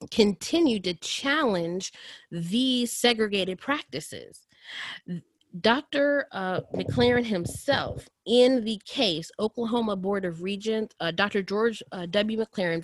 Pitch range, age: 175-230 Hz, 30-49